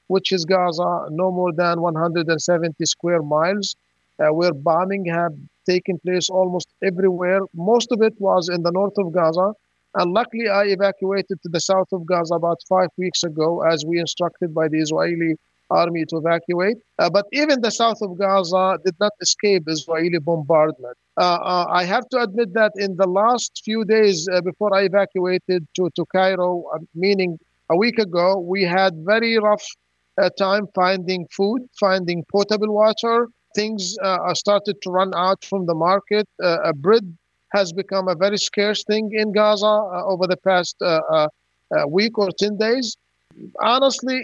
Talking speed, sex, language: 170 wpm, male, English